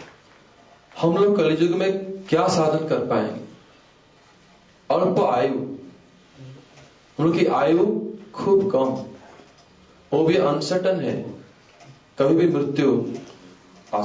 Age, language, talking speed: 40-59, English, 90 wpm